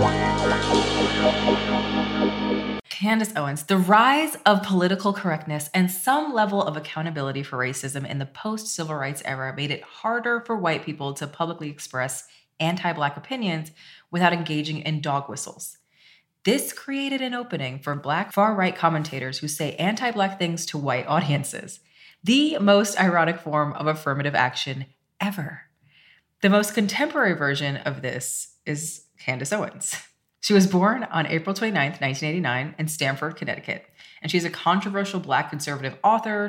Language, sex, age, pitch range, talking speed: English, female, 30-49, 145-195 Hz, 140 wpm